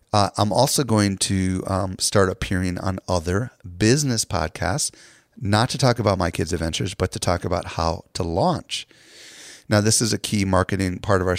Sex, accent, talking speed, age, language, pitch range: male, American, 185 wpm, 40-59, English, 95-110 Hz